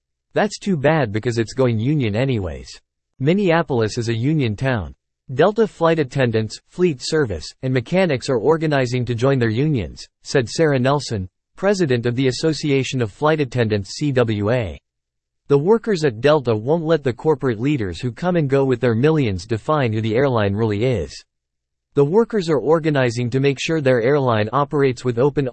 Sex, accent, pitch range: male, American, 110-150 Hz